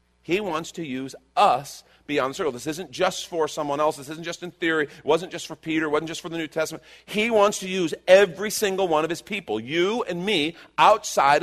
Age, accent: 40-59, American